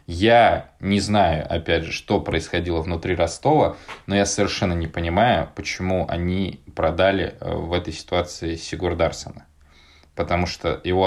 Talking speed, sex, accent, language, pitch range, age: 135 wpm, male, native, Russian, 80-90 Hz, 20-39